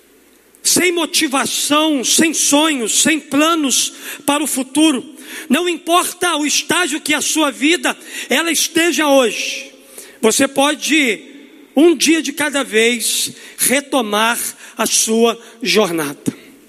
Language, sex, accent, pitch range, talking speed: Portuguese, male, Brazilian, 285-345 Hz, 110 wpm